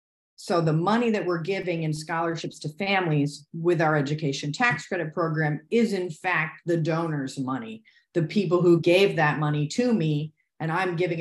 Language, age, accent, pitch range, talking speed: English, 40-59, American, 150-175 Hz, 175 wpm